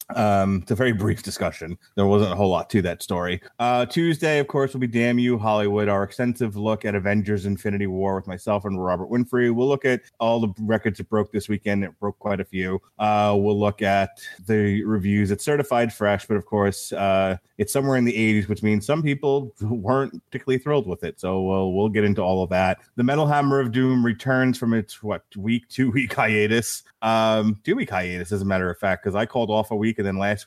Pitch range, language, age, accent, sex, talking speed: 105-130 Hz, English, 30-49, American, male, 230 wpm